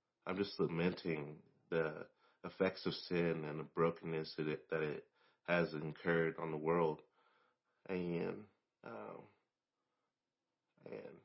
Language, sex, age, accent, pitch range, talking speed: English, male, 30-49, American, 80-95 Hz, 105 wpm